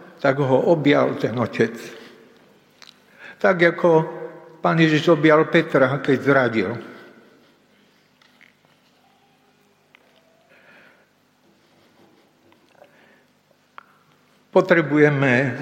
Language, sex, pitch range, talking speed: Slovak, male, 130-155 Hz, 55 wpm